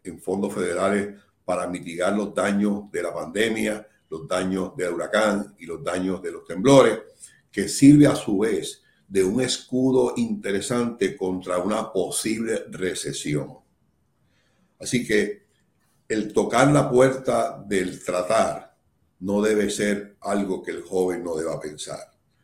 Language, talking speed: Spanish, 135 wpm